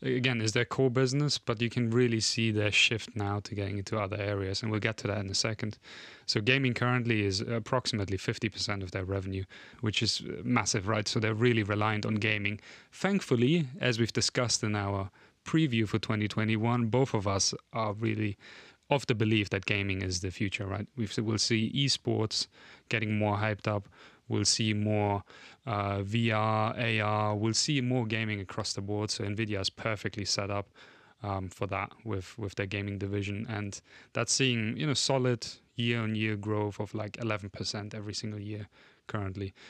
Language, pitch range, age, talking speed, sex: English, 105-120 Hz, 30-49, 180 wpm, male